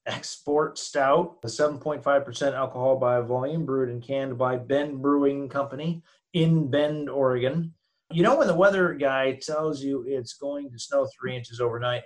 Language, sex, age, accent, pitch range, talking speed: English, male, 30-49, American, 110-140 Hz, 160 wpm